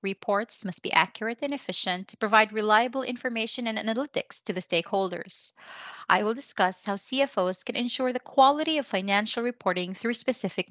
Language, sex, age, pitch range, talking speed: English, female, 30-49, 190-250 Hz, 160 wpm